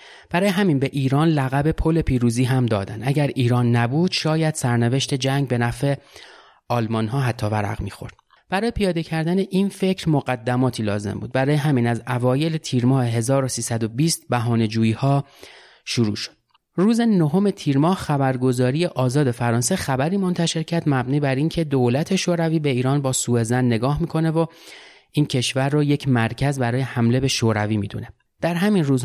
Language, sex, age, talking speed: Persian, male, 30-49, 155 wpm